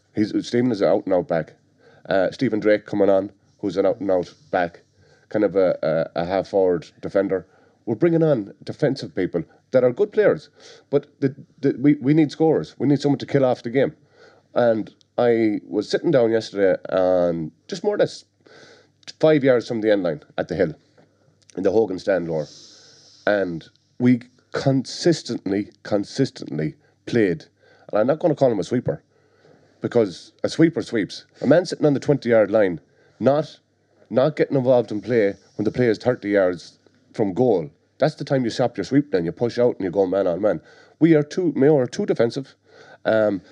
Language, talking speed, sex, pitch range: English, 185 wpm, male, 105-150 Hz